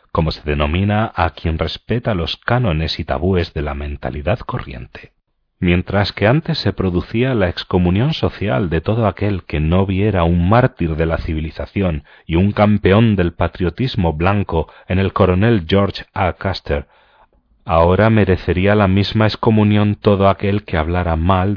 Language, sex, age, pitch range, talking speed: Spanish, male, 40-59, 80-110 Hz, 155 wpm